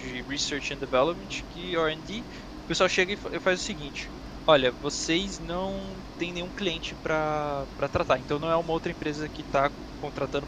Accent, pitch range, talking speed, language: Brazilian, 155-205 Hz, 180 wpm, Portuguese